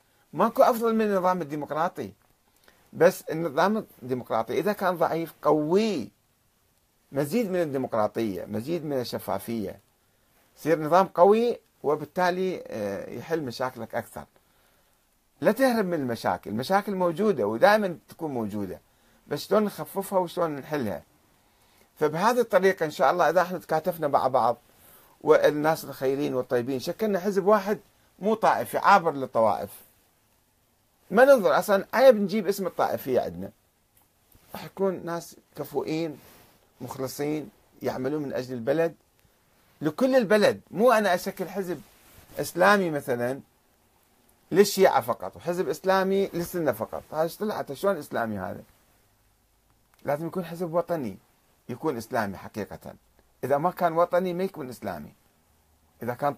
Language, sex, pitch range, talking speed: Arabic, male, 120-190 Hz, 120 wpm